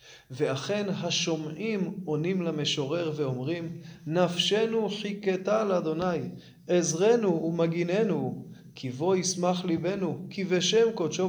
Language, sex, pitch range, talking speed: Hebrew, male, 160-195 Hz, 90 wpm